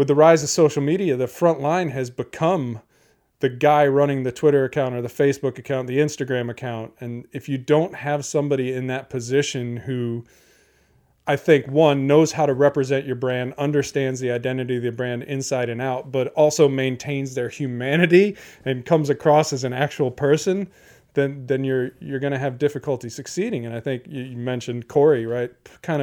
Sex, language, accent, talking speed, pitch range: male, English, American, 185 wpm, 125-145 Hz